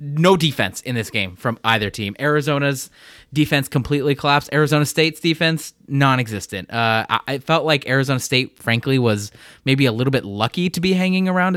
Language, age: English, 20-39